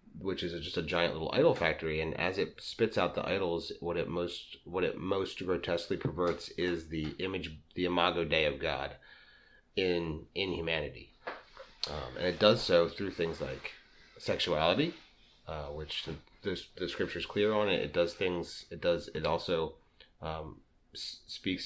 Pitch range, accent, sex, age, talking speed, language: 80-95 Hz, American, male, 30-49, 165 wpm, English